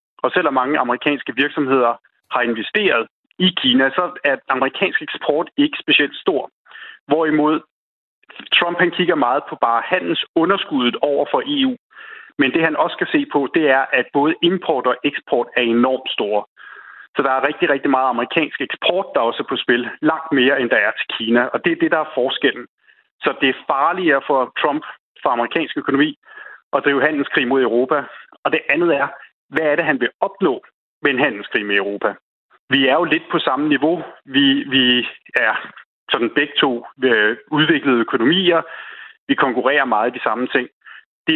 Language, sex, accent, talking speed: Danish, male, native, 180 wpm